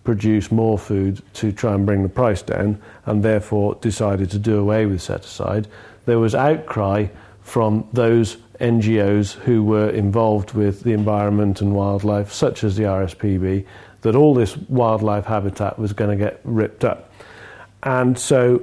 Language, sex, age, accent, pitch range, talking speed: English, male, 40-59, British, 100-115 Hz, 160 wpm